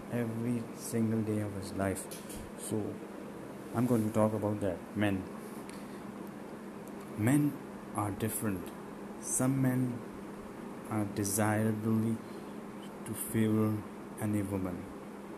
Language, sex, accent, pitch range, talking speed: English, male, Indian, 105-115 Hz, 100 wpm